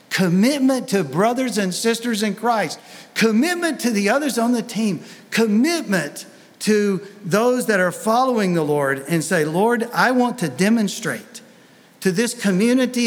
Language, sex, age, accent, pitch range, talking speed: English, male, 50-69, American, 180-235 Hz, 145 wpm